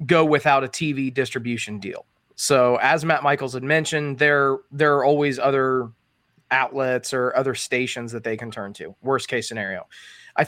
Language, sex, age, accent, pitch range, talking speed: English, male, 20-39, American, 140-175 Hz, 170 wpm